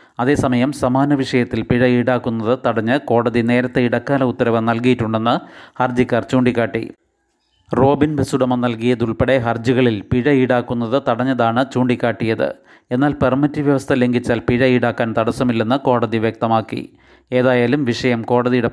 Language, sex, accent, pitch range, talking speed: Malayalam, male, native, 115-130 Hz, 105 wpm